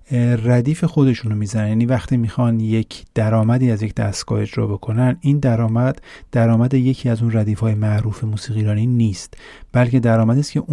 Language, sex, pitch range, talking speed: Persian, male, 110-130 Hz, 155 wpm